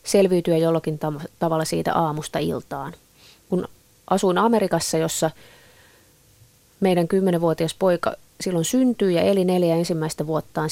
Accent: native